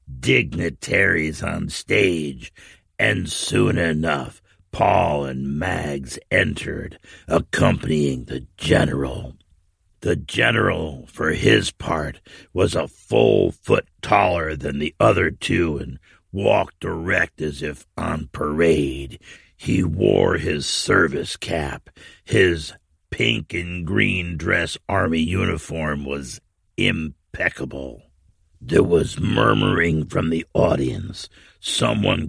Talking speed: 100 wpm